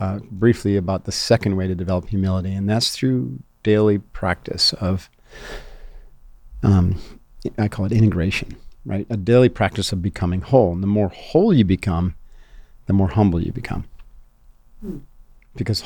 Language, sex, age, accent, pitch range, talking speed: English, male, 40-59, American, 95-110 Hz, 150 wpm